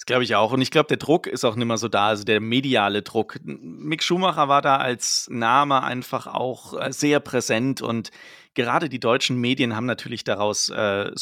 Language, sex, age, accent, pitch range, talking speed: German, male, 30-49, German, 110-135 Hz, 200 wpm